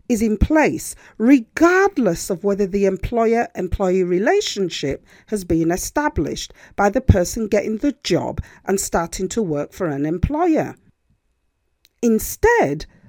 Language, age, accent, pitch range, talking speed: English, 40-59, British, 195-280 Hz, 125 wpm